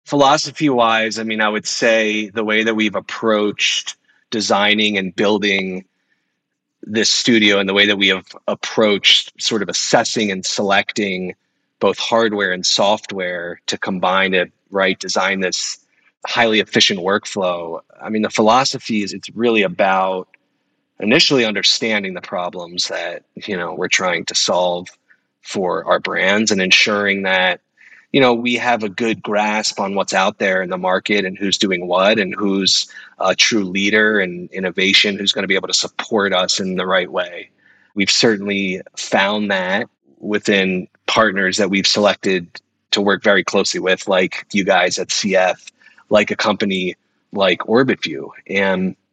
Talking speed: 155 wpm